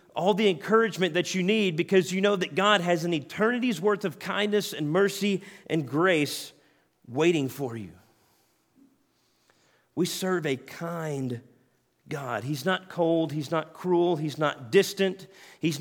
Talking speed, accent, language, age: 150 wpm, American, English, 40-59